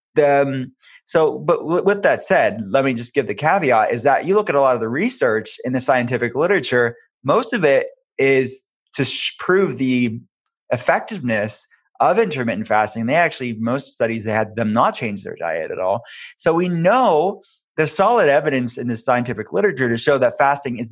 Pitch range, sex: 120-160 Hz, male